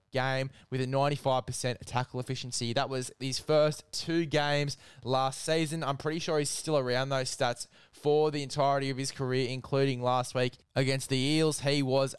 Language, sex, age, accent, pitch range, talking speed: English, male, 10-29, Australian, 130-155 Hz, 175 wpm